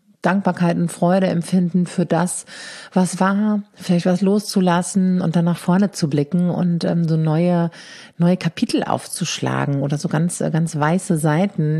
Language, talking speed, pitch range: German, 155 wpm, 165-195 Hz